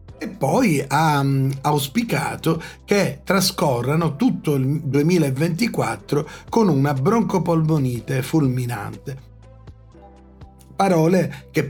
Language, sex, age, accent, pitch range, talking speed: Italian, male, 40-59, native, 135-170 Hz, 70 wpm